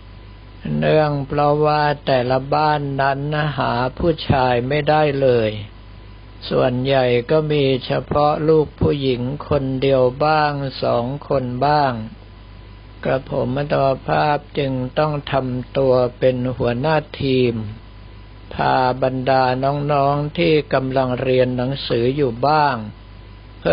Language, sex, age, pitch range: Thai, male, 60-79, 115-140 Hz